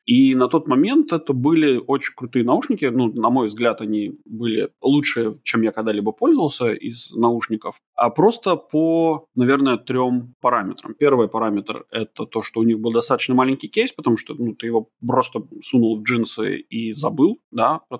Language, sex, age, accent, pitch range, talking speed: Russian, male, 20-39, native, 115-140 Hz, 175 wpm